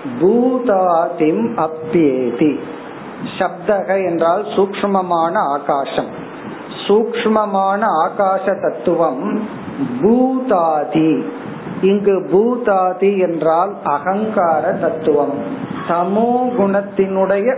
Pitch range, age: 165-215 Hz, 50-69